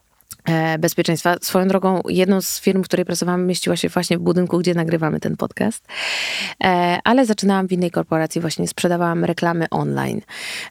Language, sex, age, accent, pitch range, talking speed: Polish, female, 20-39, native, 155-180 Hz, 150 wpm